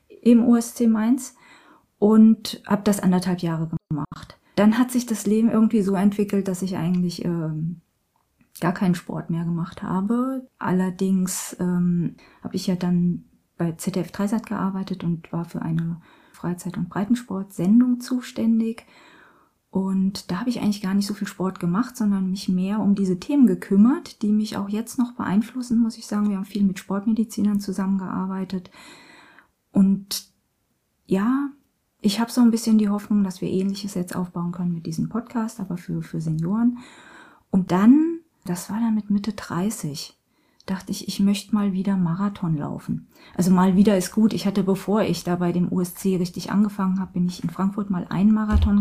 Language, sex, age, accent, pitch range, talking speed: German, female, 30-49, German, 180-225 Hz, 170 wpm